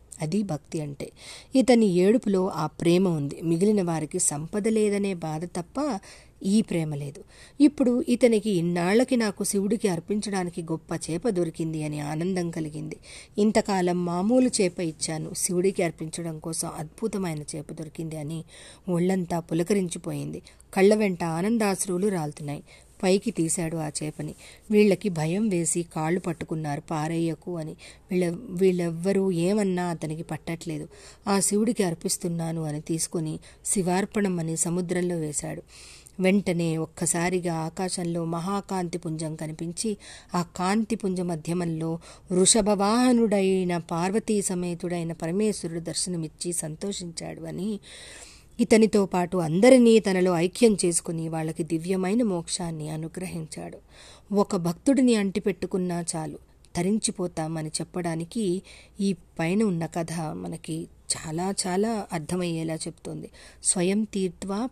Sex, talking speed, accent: female, 105 wpm, native